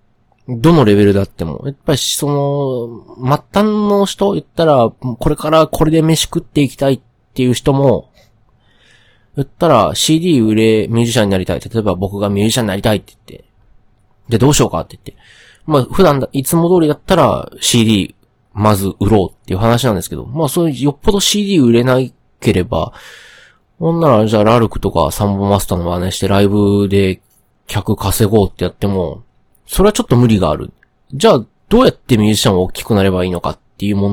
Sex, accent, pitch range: male, native, 100-140 Hz